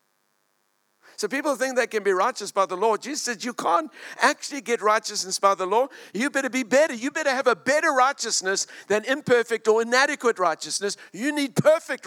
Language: English